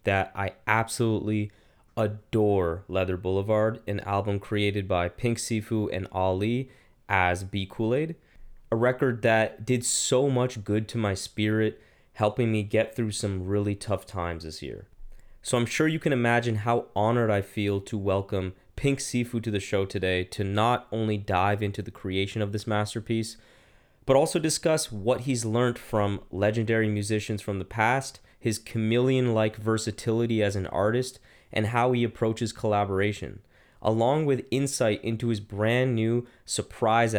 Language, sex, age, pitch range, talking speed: English, male, 20-39, 100-120 Hz, 155 wpm